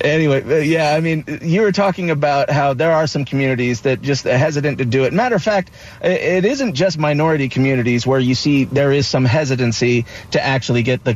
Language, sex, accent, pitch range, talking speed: English, male, American, 130-160 Hz, 210 wpm